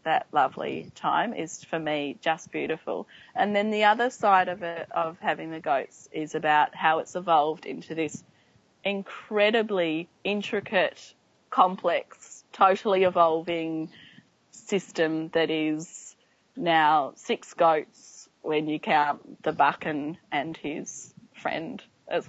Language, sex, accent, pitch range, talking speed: English, female, Australian, 155-180 Hz, 125 wpm